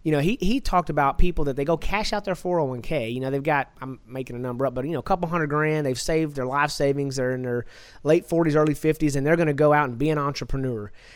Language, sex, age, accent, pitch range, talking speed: English, male, 30-49, American, 135-175 Hz, 280 wpm